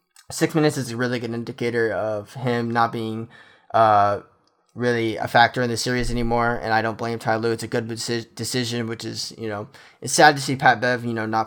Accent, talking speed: American, 225 wpm